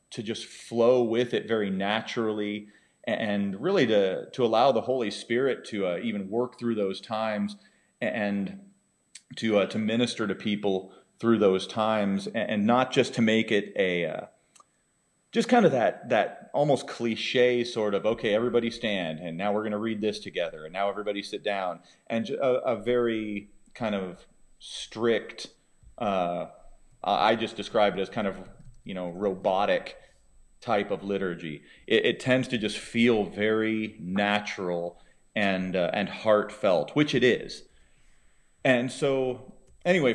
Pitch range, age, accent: 105-120 Hz, 30-49, American